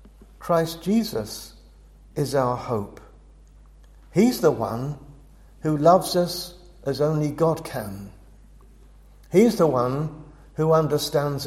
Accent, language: British, English